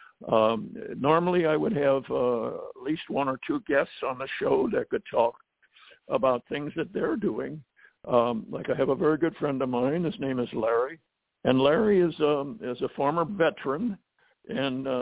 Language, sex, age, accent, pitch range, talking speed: English, male, 60-79, American, 135-200 Hz, 185 wpm